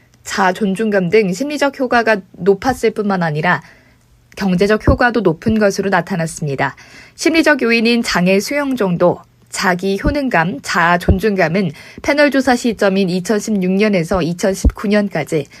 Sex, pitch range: female, 180-240 Hz